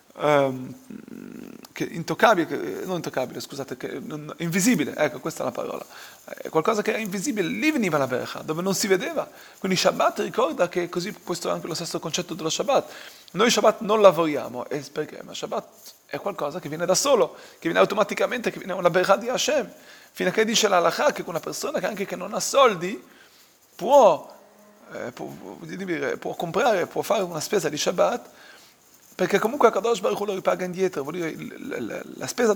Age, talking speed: 30-49, 185 wpm